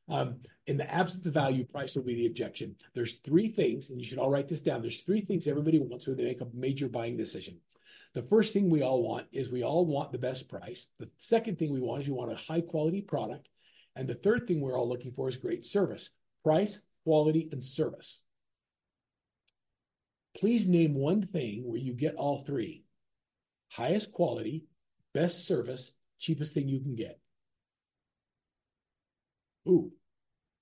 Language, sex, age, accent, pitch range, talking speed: English, male, 50-69, American, 135-190 Hz, 180 wpm